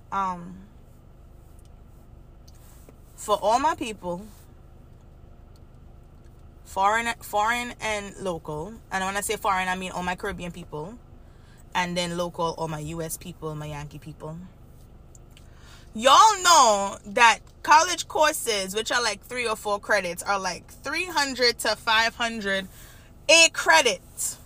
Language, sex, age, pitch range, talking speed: English, female, 20-39, 170-245 Hz, 120 wpm